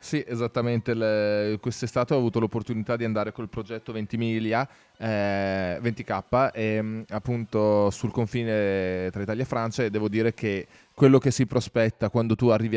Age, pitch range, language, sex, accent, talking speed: 20-39, 105-120 Hz, Italian, male, native, 155 wpm